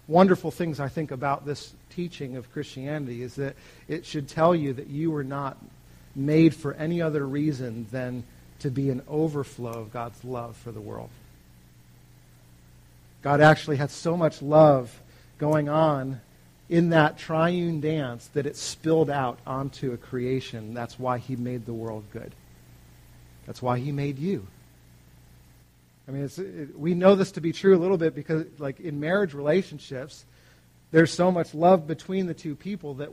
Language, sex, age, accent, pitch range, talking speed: English, male, 40-59, American, 115-160 Hz, 170 wpm